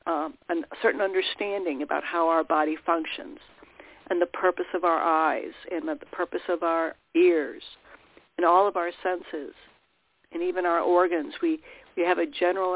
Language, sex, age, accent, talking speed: English, female, 60-79, American, 165 wpm